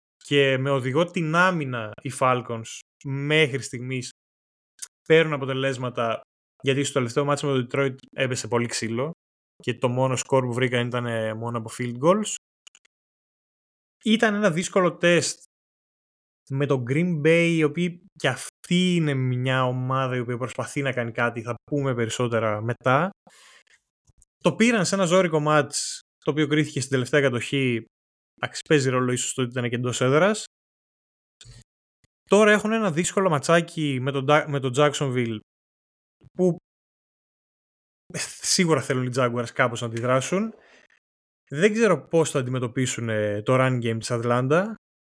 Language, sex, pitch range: Greek, male, 125-170 Hz